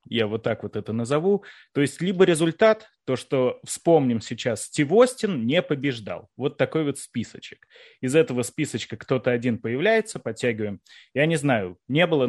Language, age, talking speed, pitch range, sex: Russian, 20-39, 160 wpm, 110-145 Hz, male